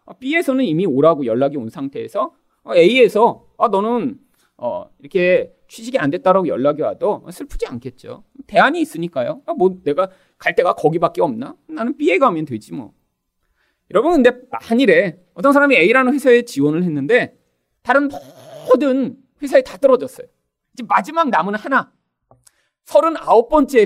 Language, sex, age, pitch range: Korean, male, 30-49, 175-280 Hz